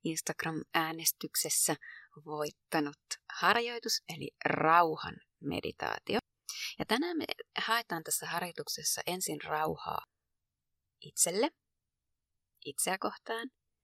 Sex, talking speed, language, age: female, 75 wpm, Finnish, 30-49